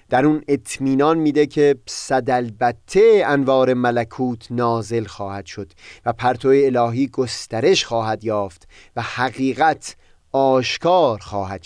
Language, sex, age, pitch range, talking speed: Persian, male, 30-49, 120-170 Hz, 115 wpm